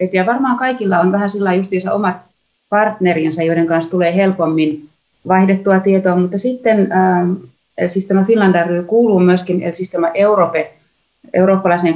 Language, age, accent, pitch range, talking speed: Finnish, 30-49, native, 170-195 Hz, 135 wpm